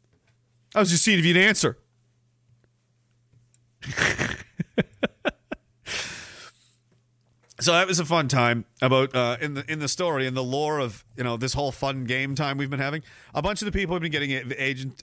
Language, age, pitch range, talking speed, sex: English, 40-59, 120-175 Hz, 170 wpm, male